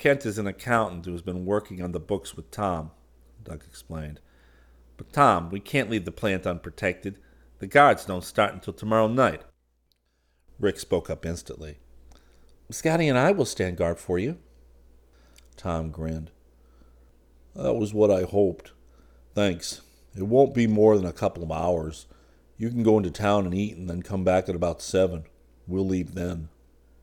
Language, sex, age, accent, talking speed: English, male, 50-69, American, 170 wpm